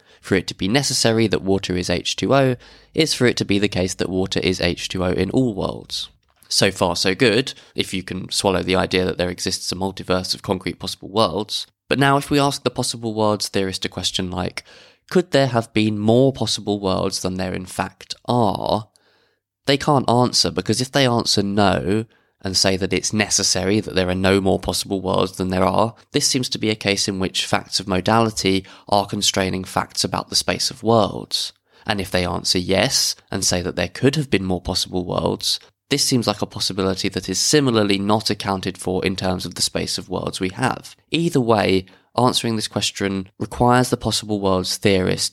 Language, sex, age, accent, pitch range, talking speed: English, male, 20-39, British, 95-115 Hz, 205 wpm